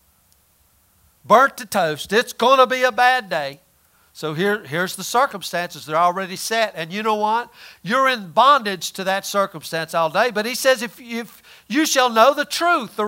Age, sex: 50-69, male